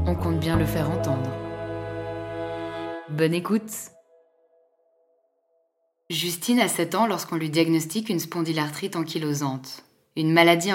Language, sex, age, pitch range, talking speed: French, female, 20-39, 155-185 Hz, 110 wpm